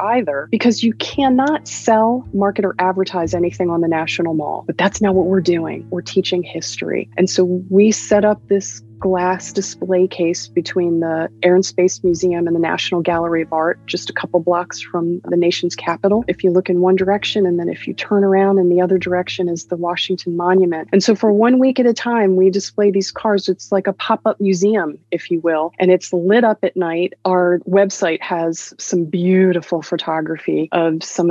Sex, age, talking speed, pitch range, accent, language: female, 30-49, 200 wpm, 170-195 Hz, American, English